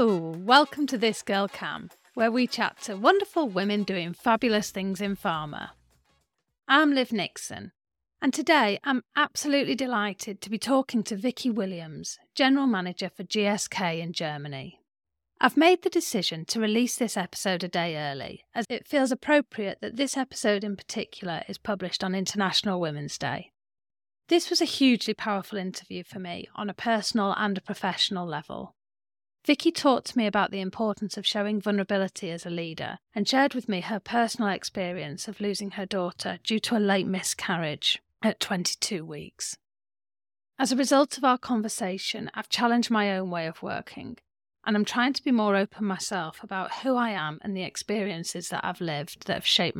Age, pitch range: 40-59, 180-240 Hz